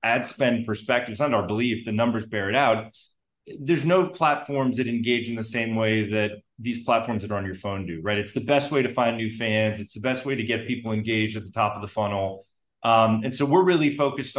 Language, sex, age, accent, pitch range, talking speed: English, male, 30-49, American, 110-135 Hz, 245 wpm